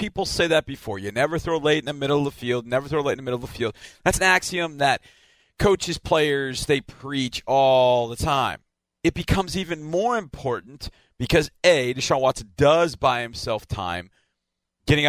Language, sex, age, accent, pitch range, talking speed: English, male, 40-59, American, 120-160 Hz, 190 wpm